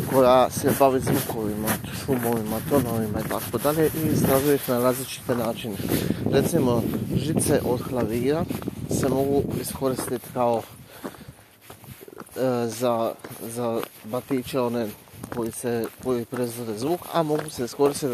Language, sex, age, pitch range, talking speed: Croatian, male, 30-49, 120-140 Hz, 115 wpm